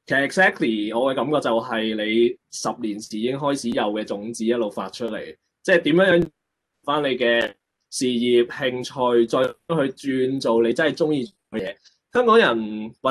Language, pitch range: Chinese, 120-170 Hz